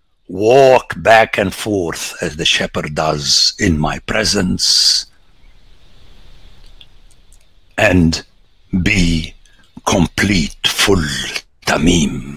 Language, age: English, 60-79